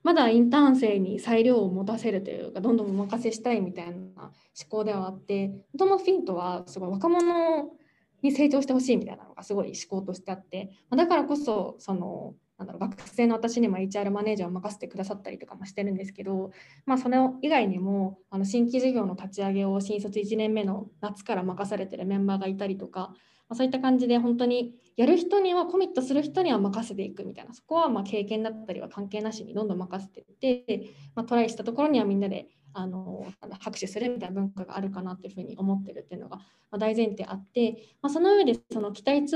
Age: 20-39